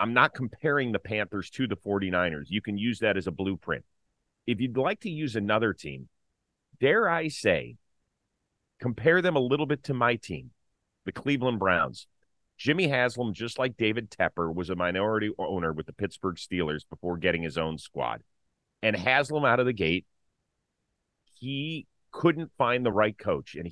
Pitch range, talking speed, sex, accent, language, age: 95-125 Hz, 170 wpm, male, American, English, 40-59